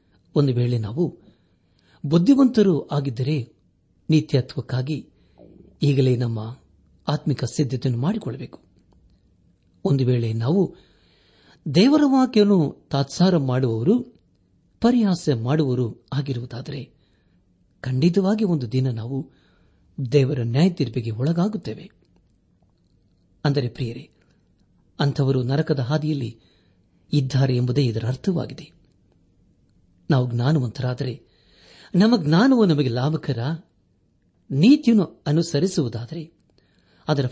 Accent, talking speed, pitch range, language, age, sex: native, 75 wpm, 100-155 Hz, Kannada, 50-69, male